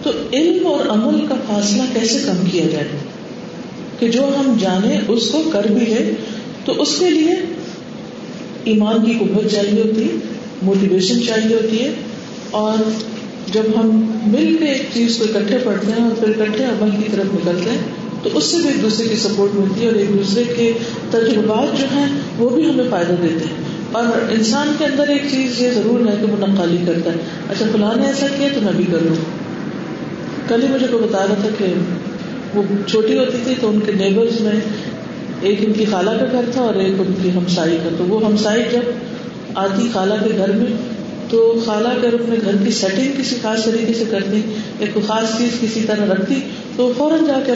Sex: female